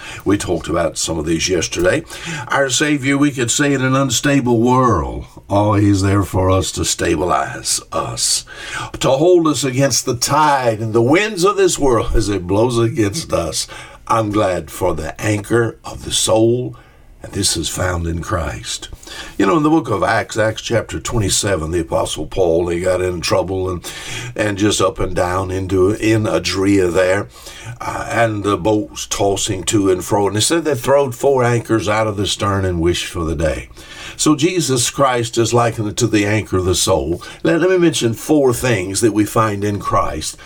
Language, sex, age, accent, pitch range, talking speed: English, male, 60-79, American, 95-125 Hz, 185 wpm